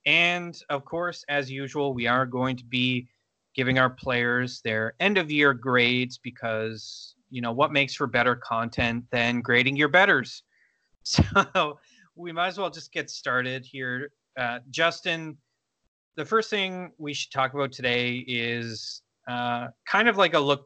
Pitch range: 120-145 Hz